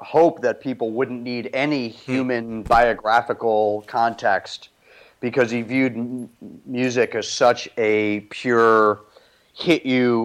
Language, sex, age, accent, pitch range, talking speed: English, male, 40-59, American, 110-130 Hz, 110 wpm